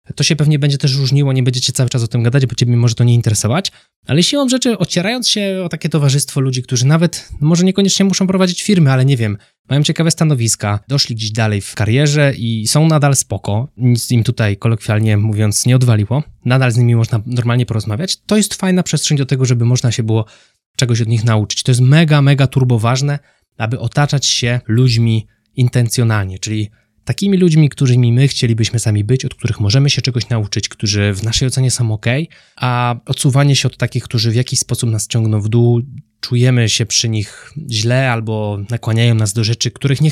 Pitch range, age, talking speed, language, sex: 115-140 Hz, 20-39, 200 wpm, Polish, male